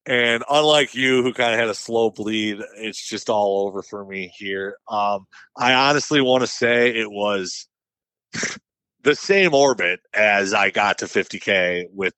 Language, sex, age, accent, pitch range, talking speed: English, male, 40-59, American, 100-130 Hz, 165 wpm